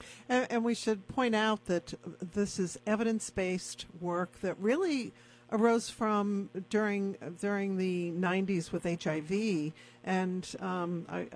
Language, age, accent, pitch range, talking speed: English, 50-69, American, 165-205 Hz, 120 wpm